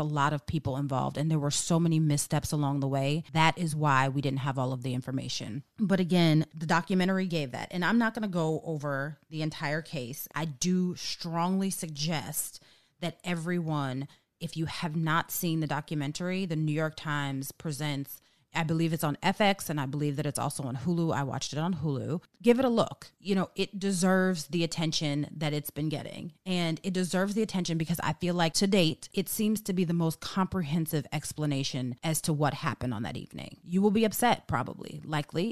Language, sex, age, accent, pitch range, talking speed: English, female, 30-49, American, 145-175 Hz, 205 wpm